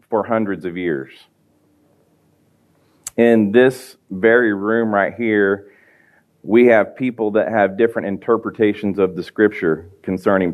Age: 40-59